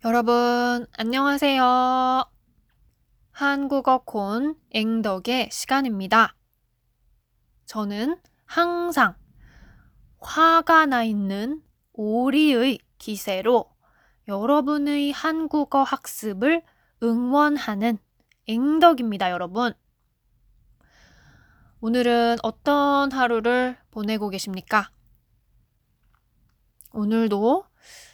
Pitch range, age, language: 210-275 Hz, 20-39, Korean